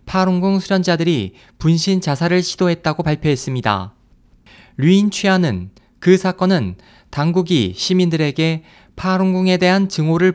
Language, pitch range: Korean, 140-185 Hz